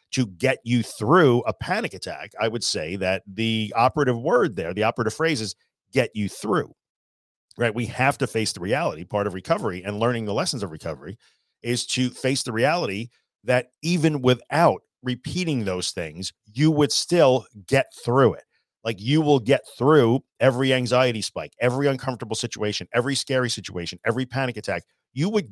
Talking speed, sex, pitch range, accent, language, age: 175 wpm, male, 105-140 Hz, American, English, 40-59